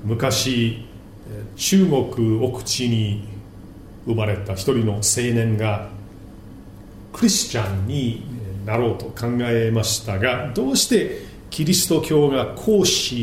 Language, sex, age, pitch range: Japanese, male, 40-59, 100-135 Hz